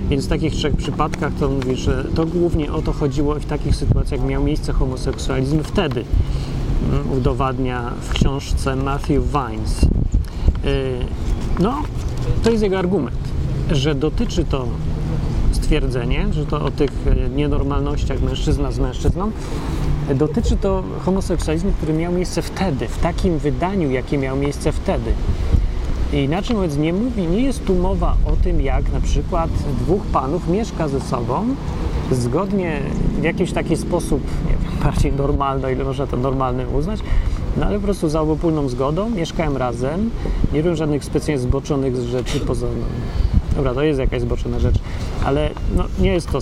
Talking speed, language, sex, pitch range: 155 wpm, Polish, male, 125-155 Hz